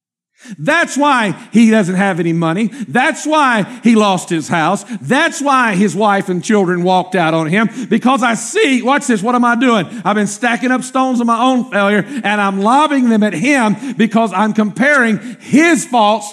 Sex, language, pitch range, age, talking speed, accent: male, English, 205-255 Hz, 50-69, 190 wpm, American